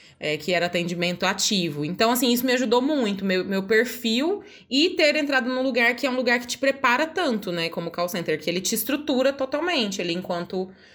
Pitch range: 185-245 Hz